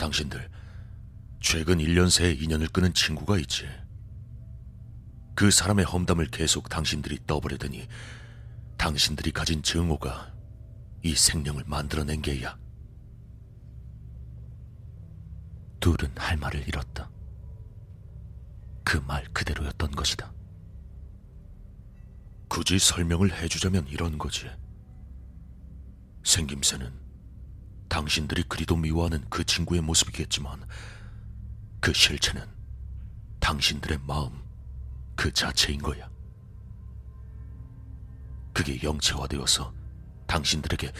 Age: 40-59